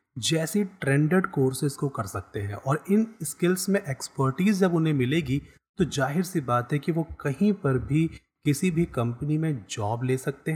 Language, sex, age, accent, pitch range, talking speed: Hindi, male, 30-49, native, 125-170 Hz, 180 wpm